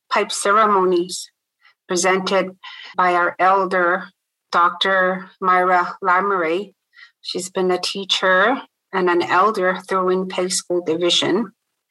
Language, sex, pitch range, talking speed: English, female, 180-210 Hz, 100 wpm